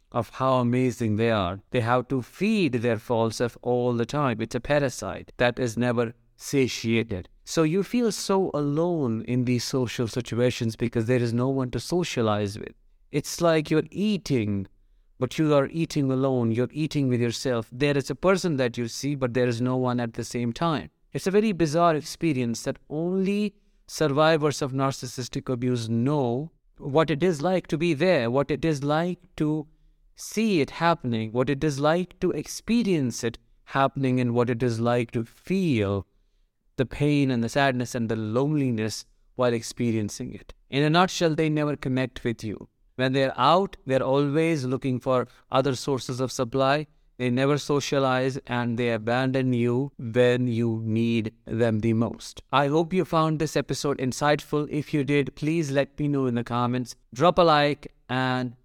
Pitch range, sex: 120-150 Hz, male